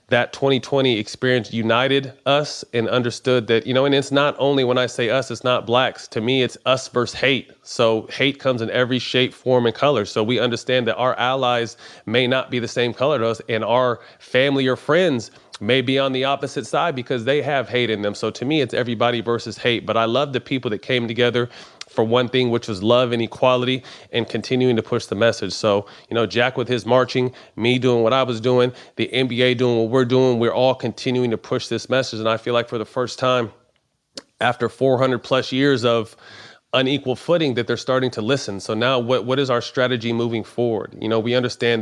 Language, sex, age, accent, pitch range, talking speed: English, male, 30-49, American, 115-130 Hz, 225 wpm